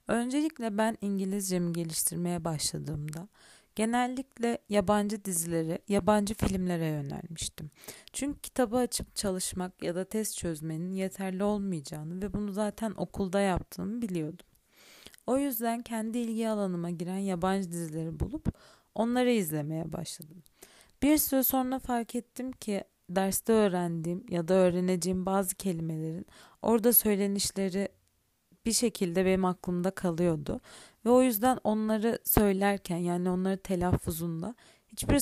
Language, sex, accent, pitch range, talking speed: Turkish, female, native, 180-225 Hz, 115 wpm